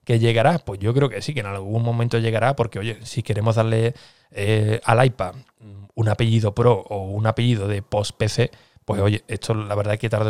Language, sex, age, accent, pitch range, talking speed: Spanish, male, 20-39, Spanish, 110-125 Hz, 210 wpm